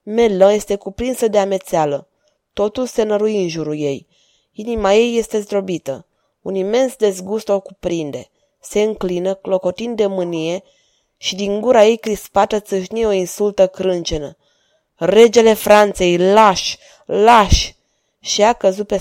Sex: female